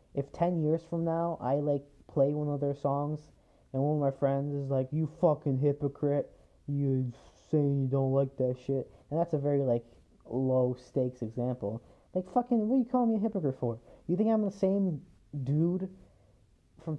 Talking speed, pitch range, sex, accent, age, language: 185 wpm, 115-150 Hz, male, American, 20-39, English